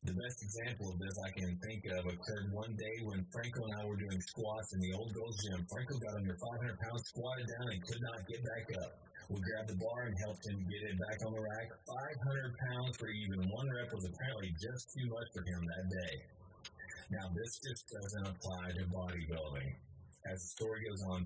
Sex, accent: male, American